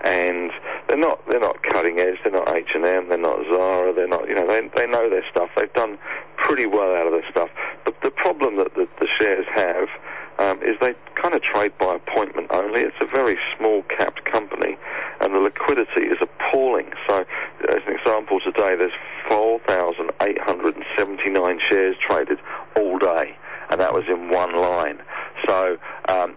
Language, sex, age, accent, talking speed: English, male, 60-79, British, 175 wpm